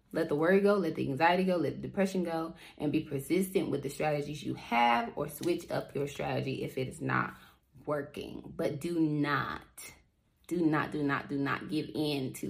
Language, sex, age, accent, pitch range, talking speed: English, female, 20-39, American, 145-170 Hz, 200 wpm